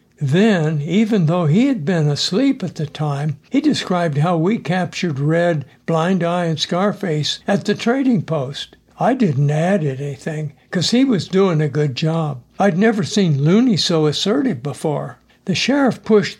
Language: English